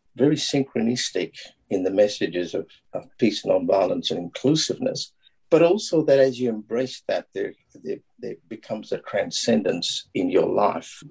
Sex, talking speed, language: male, 145 wpm, English